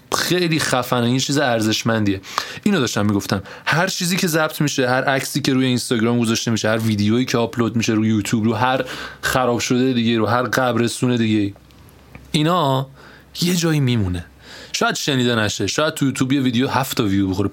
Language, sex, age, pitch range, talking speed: Persian, male, 20-39, 110-135 Hz, 170 wpm